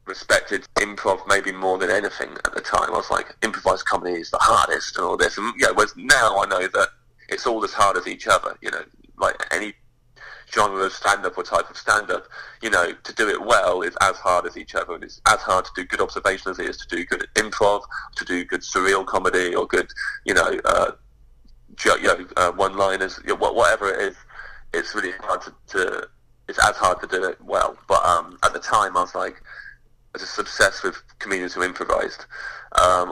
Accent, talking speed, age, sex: British, 220 wpm, 30-49, male